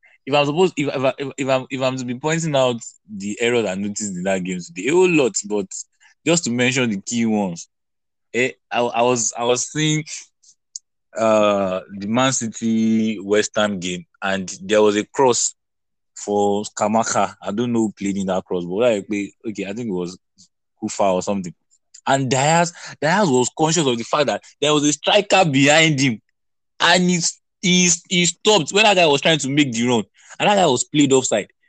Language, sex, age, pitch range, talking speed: English, male, 20-39, 110-165 Hz, 205 wpm